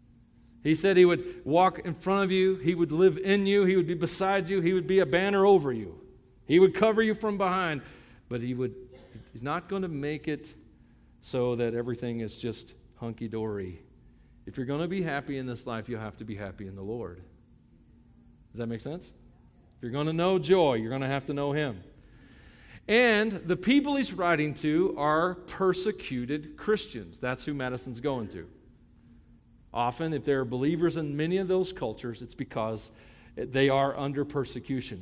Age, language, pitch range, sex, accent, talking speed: 40-59, English, 125-185 Hz, male, American, 190 wpm